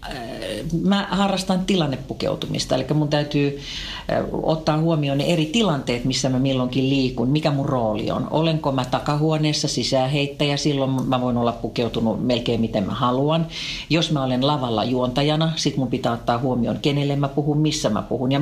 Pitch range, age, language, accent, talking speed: 130-160 Hz, 50-69, Finnish, native, 160 wpm